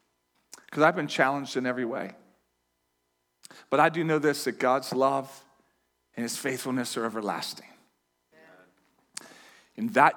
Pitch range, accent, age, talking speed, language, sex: 115-165 Hz, American, 40-59, 130 wpm, English, male